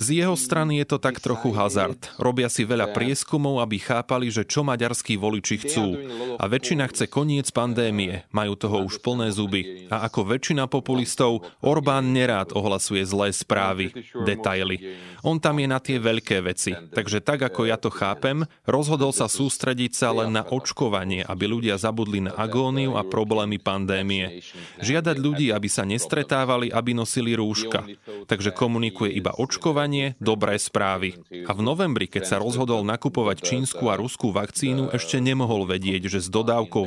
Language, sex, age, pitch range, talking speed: Slovak, male, 30-49, 100-130 Hz, 160 wpm